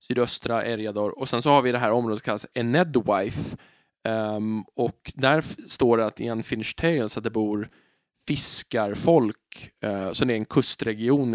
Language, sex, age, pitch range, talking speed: Swedish, male, 20-39, 110-145 Hz, 180 wpm